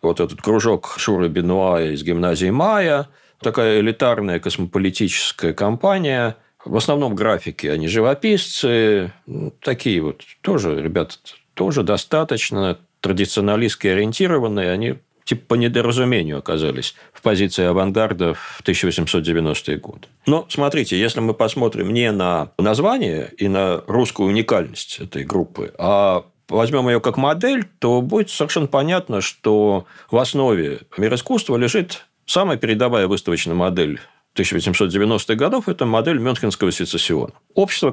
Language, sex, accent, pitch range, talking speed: Russian, male, native, 95-140 Hz, 125 wpm